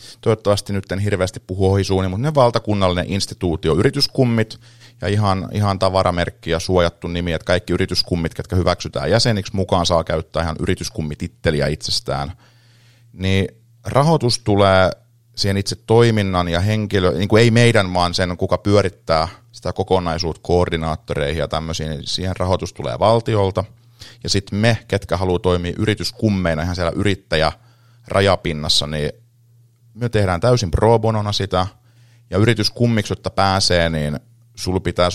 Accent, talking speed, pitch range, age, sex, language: native, 135 wpm, 85-110 Hz, 30-49, male, Finnish